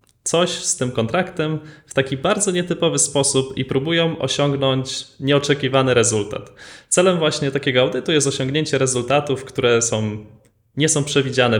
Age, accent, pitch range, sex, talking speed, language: 20-39, native, 115-150 Hz, male, 135 wpm, Polish